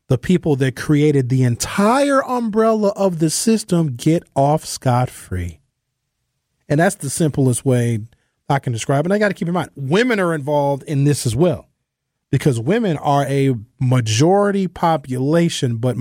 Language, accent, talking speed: English, American, 160 wpm